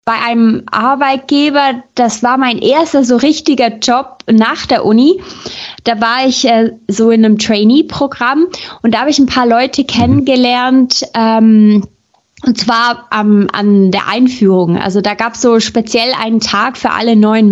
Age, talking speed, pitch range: 20-39, 160 wpm, 215-260 Hz